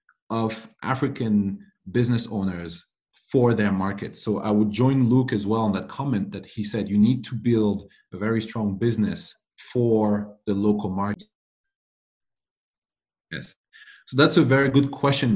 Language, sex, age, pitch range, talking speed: English, male, 30-49, 105-130 Hz, 150 wpm